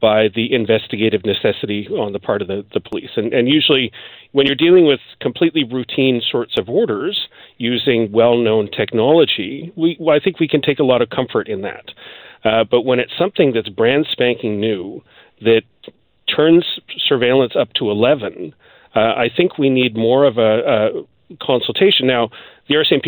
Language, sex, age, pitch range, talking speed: English, male, 40-59, 115-140 Hz, 170 wpm